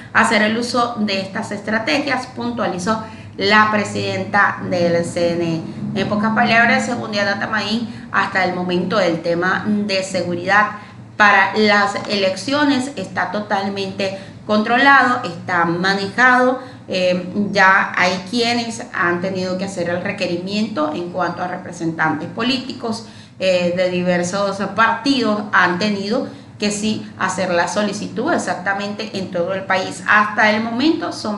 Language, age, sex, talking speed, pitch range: Spanish, 30-49, female, 130 wpm, 185-230 Hz